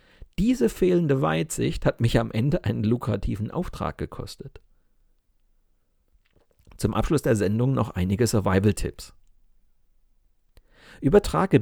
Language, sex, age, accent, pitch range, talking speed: German, male, 40-59, German, 110-160 Hz, 100 wpm